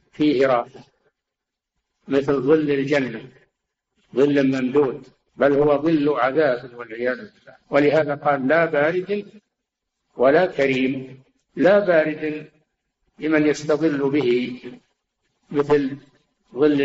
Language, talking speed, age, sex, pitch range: Arabic, 90 wpm, 60-79, male, 135-165 Hz